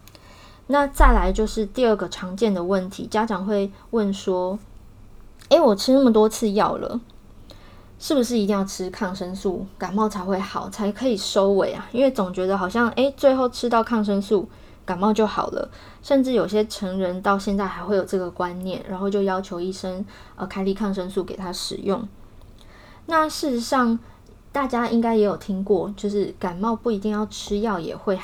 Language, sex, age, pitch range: Chinese, female, 20-39, 185-230 Hz